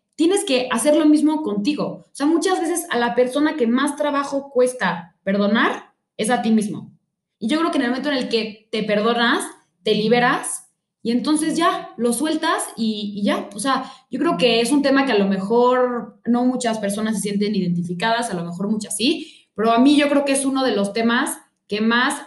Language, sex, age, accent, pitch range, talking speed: Spanish, female, 20-39, Mexican, 205-260 Hz, 215 wpm